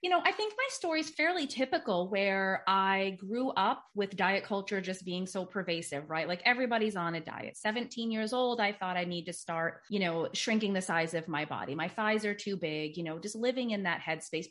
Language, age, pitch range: English, 30-49, 180-260 Hz